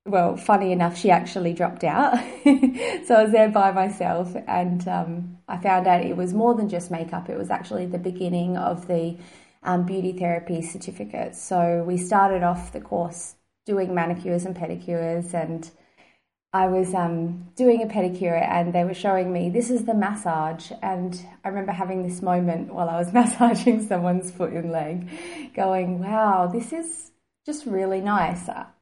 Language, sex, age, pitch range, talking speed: English, female, 20-39, 170-195 Hz, 175 wpm